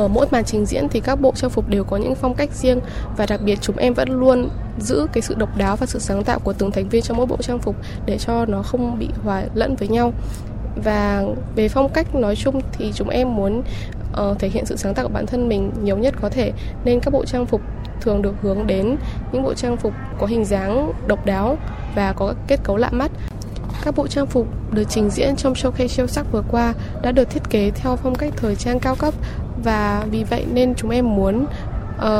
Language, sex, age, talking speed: Vietnamese, female, 10-29, 245 wpm